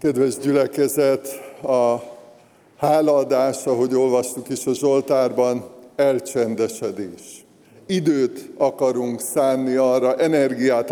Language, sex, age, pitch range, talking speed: Hungarian, male, 50-69, 120-145 Hz, 80 wpm